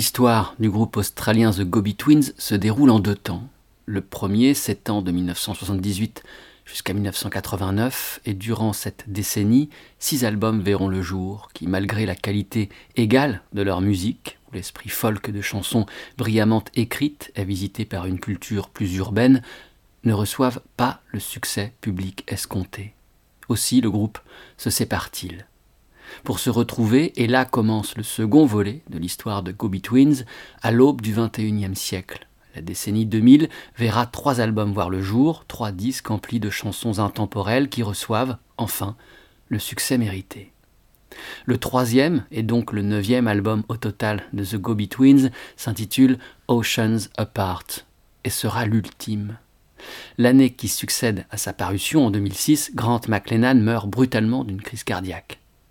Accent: French